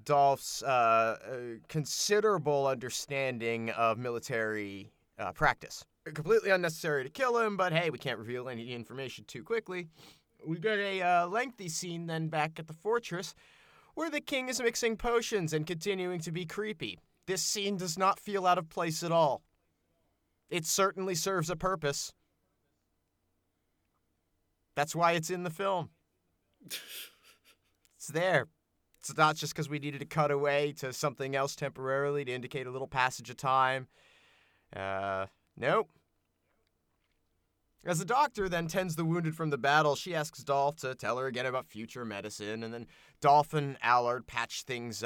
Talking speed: 155 wpm